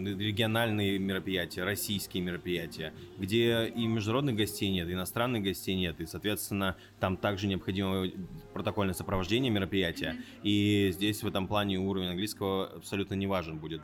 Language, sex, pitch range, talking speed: Russian, male, 90-105 Hz, 135 wpm